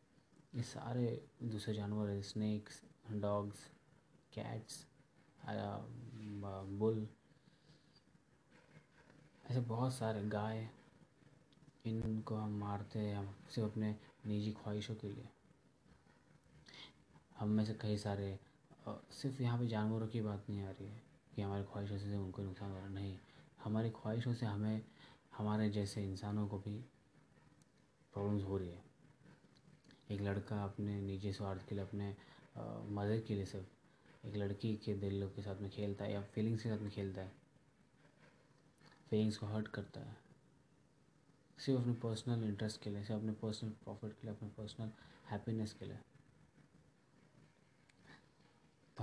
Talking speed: 135 wpm